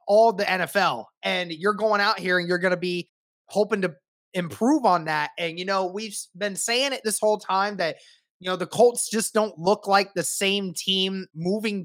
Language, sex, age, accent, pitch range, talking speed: English, male, 20-39, American, 175-210 Hz, 210 wpm